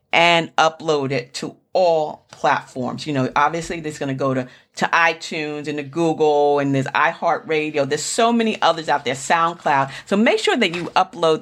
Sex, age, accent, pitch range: female, 40-59, American, 150-220 Hz